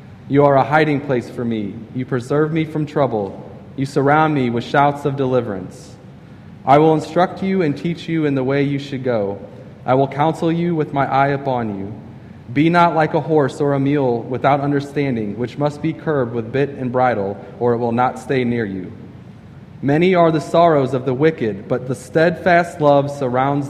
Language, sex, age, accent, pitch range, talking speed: English, male, 20-39, American, 115-140 Hz, 195 wpm